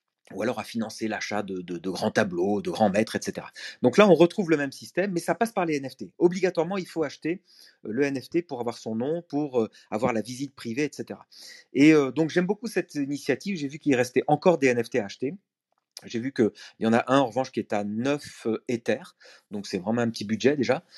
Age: 40-59